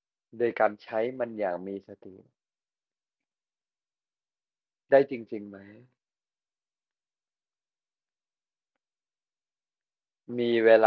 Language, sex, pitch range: Thai, male, 105-125 Hz